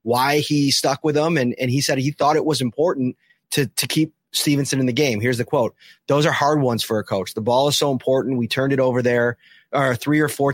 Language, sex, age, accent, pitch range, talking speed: English, male, 30-49, American, 125-155 Hz, 255 wpm